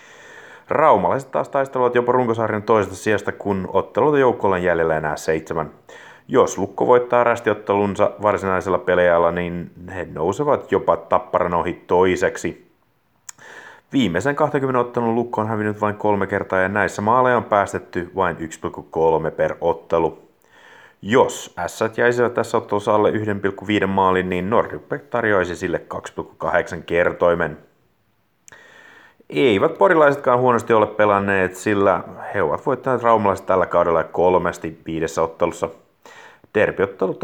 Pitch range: 85-120 Hz